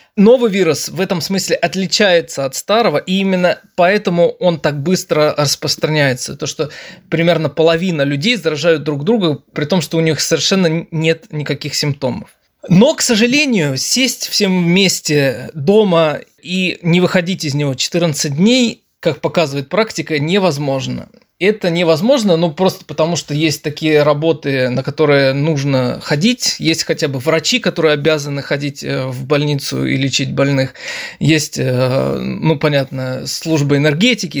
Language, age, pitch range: Russian, 20-39, 150-185 Hz